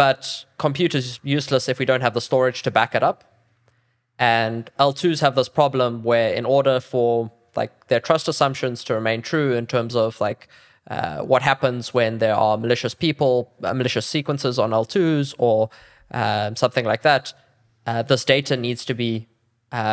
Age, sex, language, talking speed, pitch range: 20-39, male, English, 180 wpm, 115-135 Hz